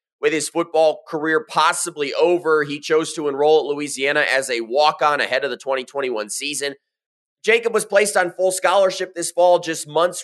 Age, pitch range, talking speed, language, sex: 30-49, 145-180 Hz, 175 wpm, English, male